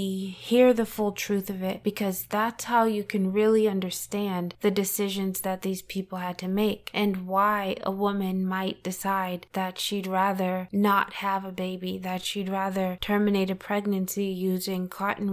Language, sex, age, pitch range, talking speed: English, female, 20-39, 185-205 Hz, 165 wpm